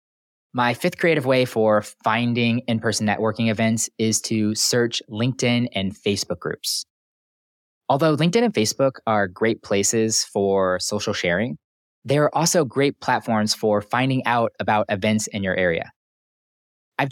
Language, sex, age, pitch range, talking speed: English, male, 20-39, 105-125 Hz, 140 wpm